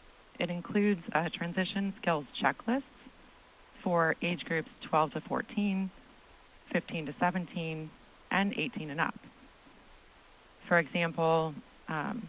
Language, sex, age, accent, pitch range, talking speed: English, female, 30-49, American, 165-230 Hz, 105 wpm